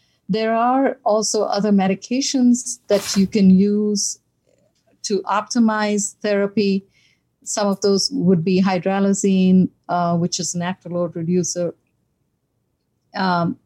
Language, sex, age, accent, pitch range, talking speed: English, female, 50-69, Indian, 180-210 Hz, 110 wpm